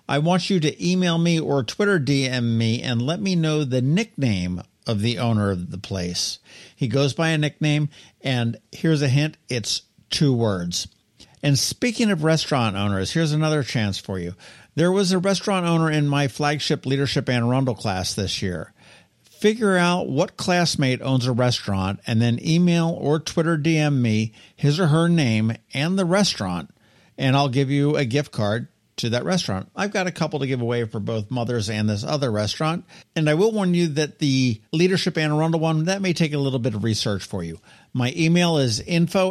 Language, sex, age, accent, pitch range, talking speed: English, male, 50-69, American, 120-170 Hz, 195 wpm